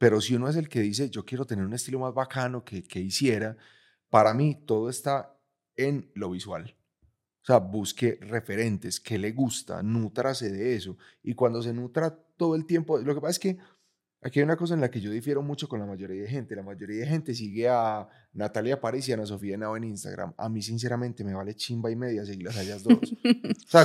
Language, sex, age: Spanish, male, 30-49